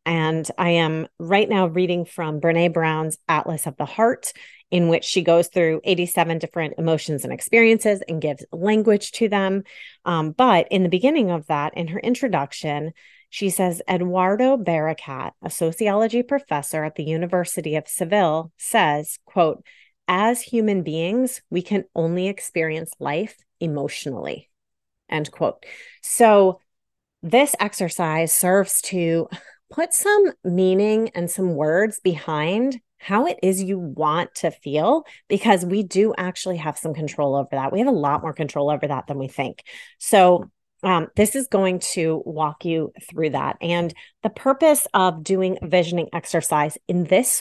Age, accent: 30-49, American